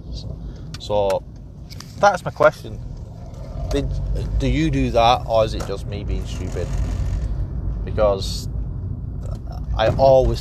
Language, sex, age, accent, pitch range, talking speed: English, male, 20-39, British, 100-130 Hz, 110 wpm